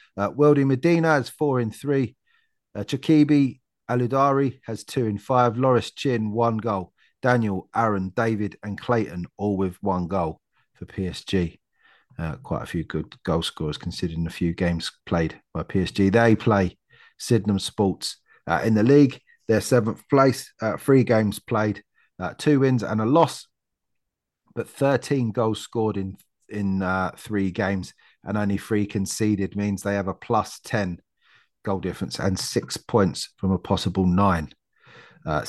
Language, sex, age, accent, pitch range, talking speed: English, male, 30-49, British, 95-120 Hz, 155 wpm